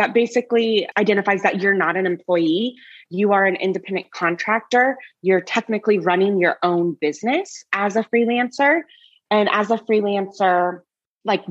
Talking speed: 140 wpm